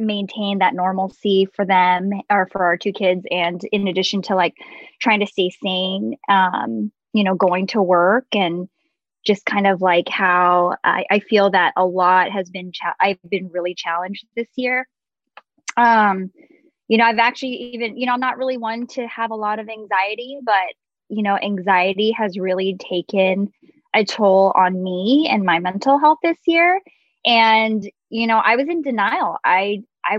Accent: American